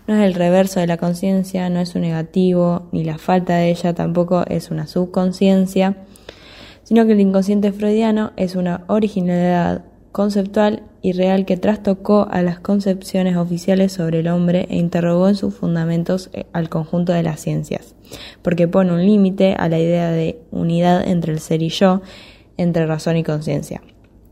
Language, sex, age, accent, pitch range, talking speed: Spanish, female, 10-29, Argentinian, 170-190 Hz, 170 wpm